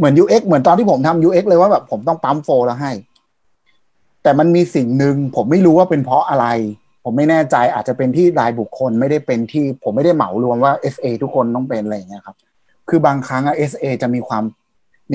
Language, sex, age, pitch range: Thai, male, 30-49, 120-155 Hz